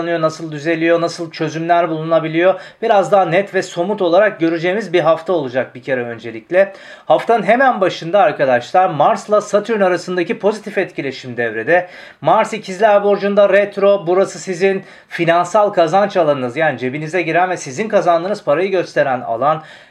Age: 40-59